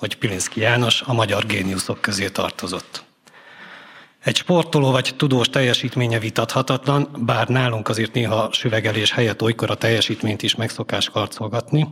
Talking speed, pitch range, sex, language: 130 wpm, 105-125 Hz, male, Hungarian